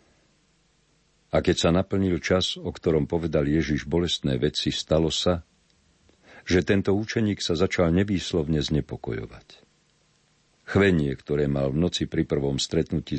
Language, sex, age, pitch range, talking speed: Slovak, male, 50-69, 75-95 Hz, 125 wpm